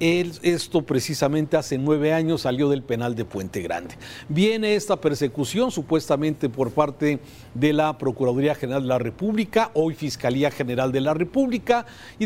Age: 50-69